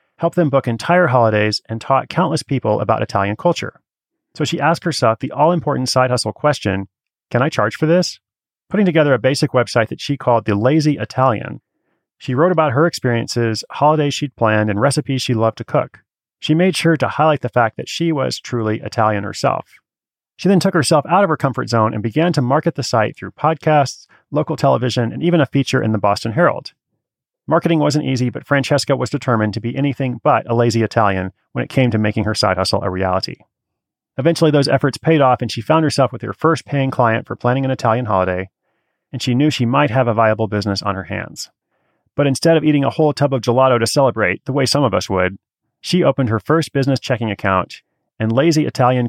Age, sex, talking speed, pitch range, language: 30-49, male, 210 wpm, 110-150 Hz, English